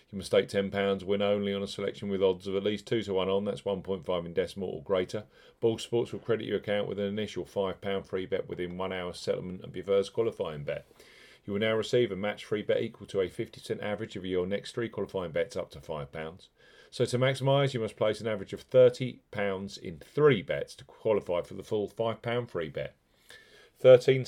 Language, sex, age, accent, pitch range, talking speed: English, male, 40-59, British, 100-130 Hz, 220 wpm